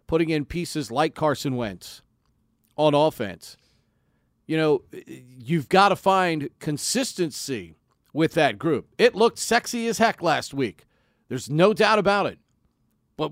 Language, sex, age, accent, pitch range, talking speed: English, male, 40-59, American, 135-180 Hz, 140 wpm